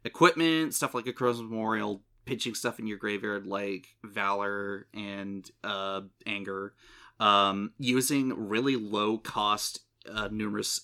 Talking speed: 125 wpm